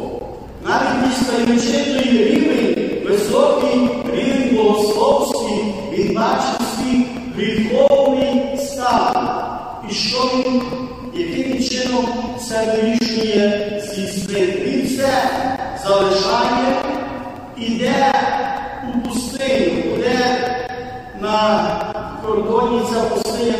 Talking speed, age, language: 65 wpm, 50-69, Ukrainian